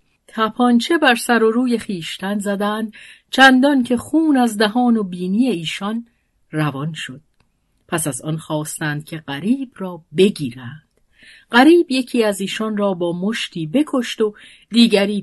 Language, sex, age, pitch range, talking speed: Persian, female, 50-69, 175-245 Hz, 140 wpm